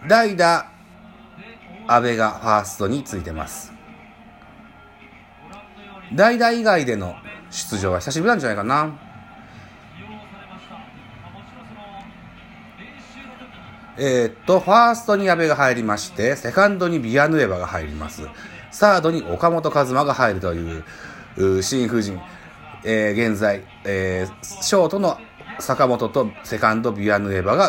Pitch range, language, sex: 100-160 Hz, Japanese, male